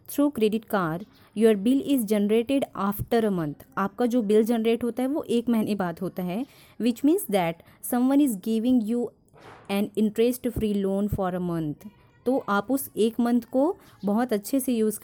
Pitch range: 195-250 Hz